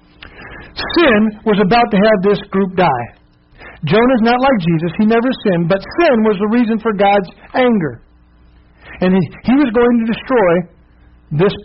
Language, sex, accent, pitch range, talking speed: English, male, American, 145-220 Hz, 160 wpm